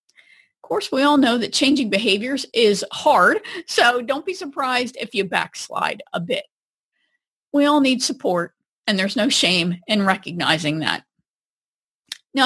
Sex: female